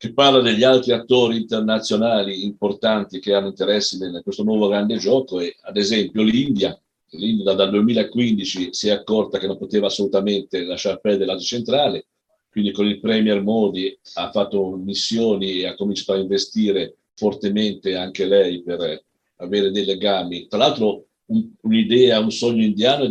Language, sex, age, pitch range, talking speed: Italian, male, 50-69, 95-120 Hz, 160 wpm